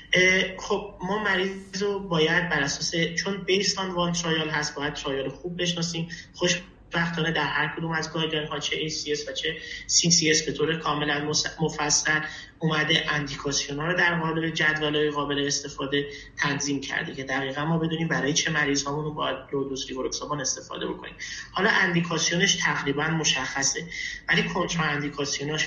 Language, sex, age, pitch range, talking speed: Persian, male, 30-49, 140-165 Hz, 155 wpm